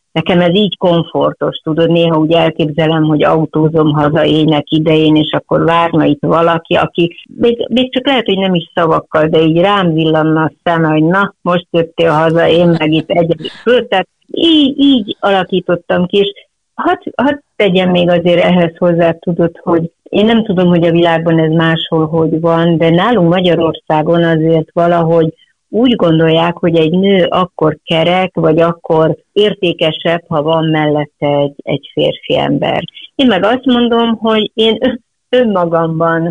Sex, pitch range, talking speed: female, 160-190 Hz, 155 wpm